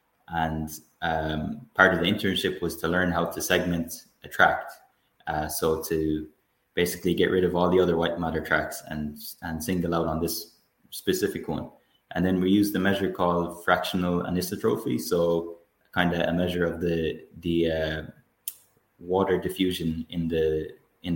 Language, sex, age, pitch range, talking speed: English, male, 20-39, 80-90 Hz, 165 wpm